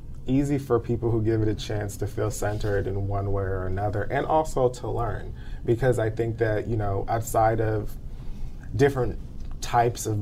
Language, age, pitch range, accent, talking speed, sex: English, 20-39, 95-115 Hz, American, 180 wpm, male